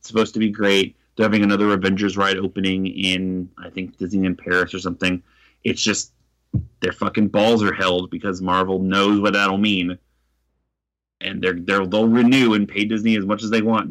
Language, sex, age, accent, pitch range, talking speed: English, male, 30-49, American, 95-110 Hz, 190 wpm